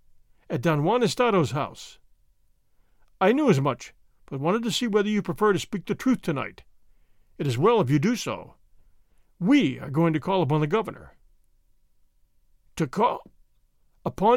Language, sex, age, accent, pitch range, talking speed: English, male, 50-69, American, 155-210 Hz, 165 wpm